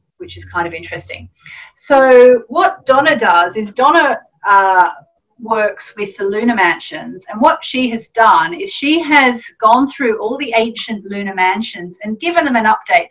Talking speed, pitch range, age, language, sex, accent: 170 wpm, 200-255 Hz, 40-59, English, female, Australian